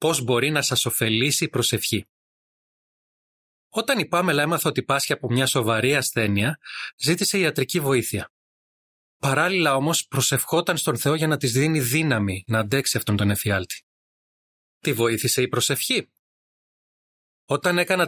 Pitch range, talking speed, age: 120-155 Hz, 135 wpm, 30-49